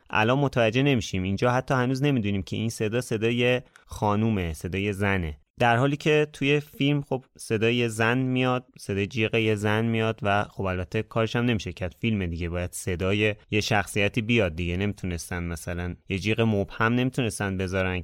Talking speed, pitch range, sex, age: 160 wpm, 100-130 Hz, male, 30-49